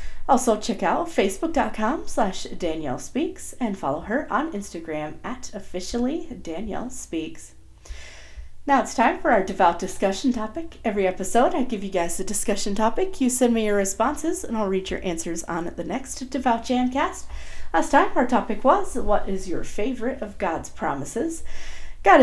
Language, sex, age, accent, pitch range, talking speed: English, female, 40-59, American, 180-270 Hz, 165 wpm